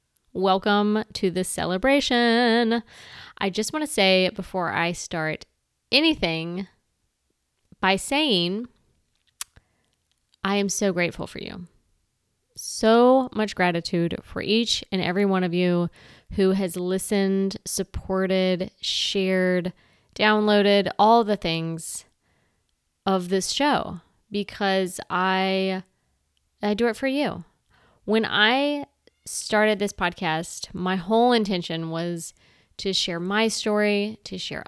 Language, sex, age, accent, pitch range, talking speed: English, female, 20-39, American, 175-210 Hz, 110 wpm